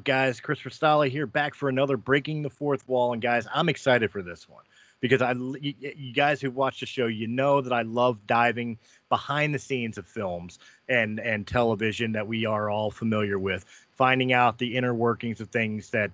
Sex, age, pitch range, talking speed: male, 30-49, 110-140 Hz, 200 wpm